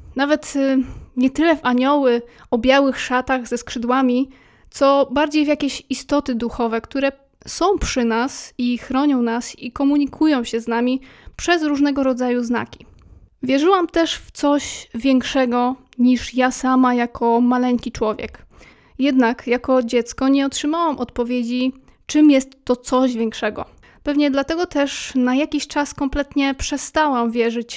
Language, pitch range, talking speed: Polish, 245-275 Hz, 135 wpm